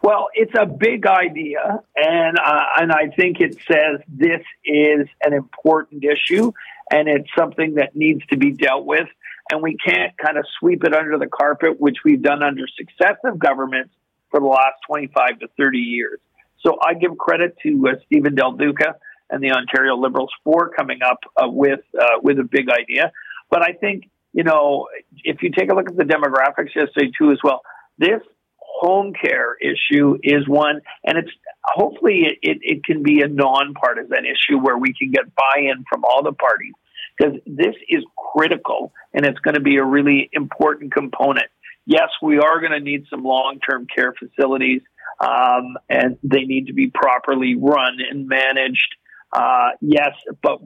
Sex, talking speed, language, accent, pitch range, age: male, 180 wpm, English, American, 135-210 Hz, 50-69